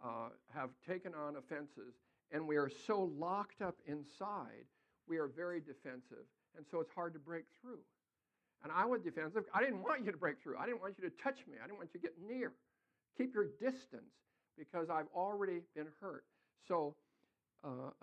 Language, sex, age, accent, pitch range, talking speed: English, male, 60-79, American, 150-205 Hz, 195 wpm